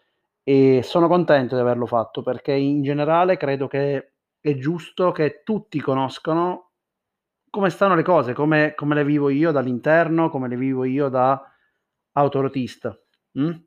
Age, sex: 30-49, male